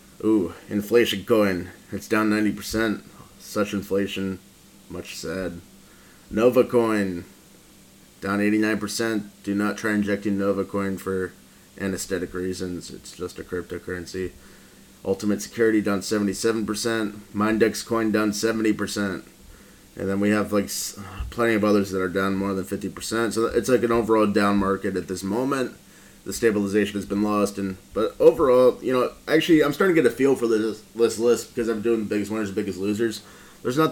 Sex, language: male, English